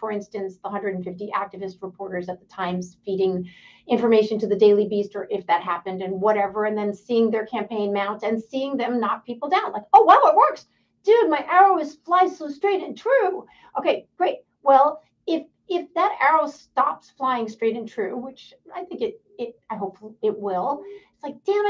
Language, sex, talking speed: English, female, 195 wpm